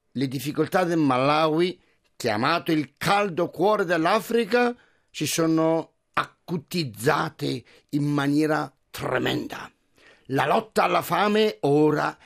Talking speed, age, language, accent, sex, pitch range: 100 wpm, 50-69, Italian, native, male, 150-220 Hz